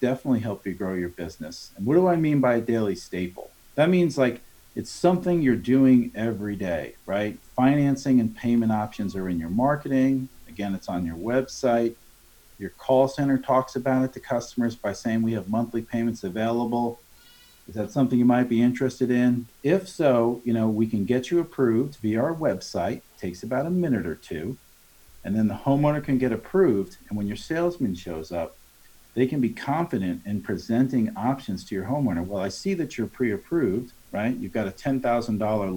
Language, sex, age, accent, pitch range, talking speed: English, male, 40-59, American, 105-135 Hz, 190 wpm